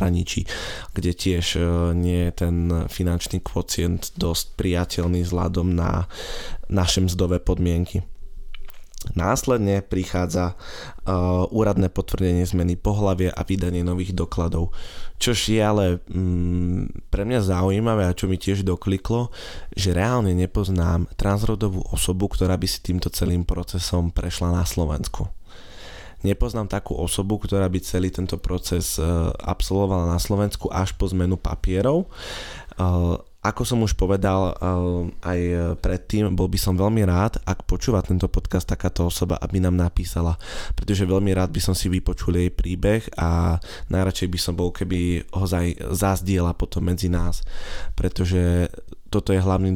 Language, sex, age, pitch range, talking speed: Slovak, male, 20-39, 85-95 Hz, 135 wpm